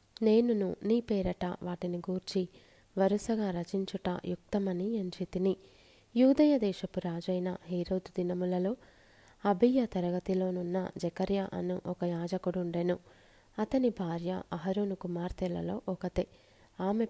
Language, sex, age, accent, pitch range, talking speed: Telugu, female, 20-39, native, 180-205 Hz, 90 wpm